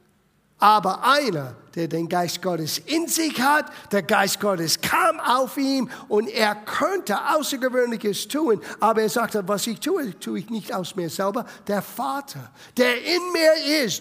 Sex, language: male, German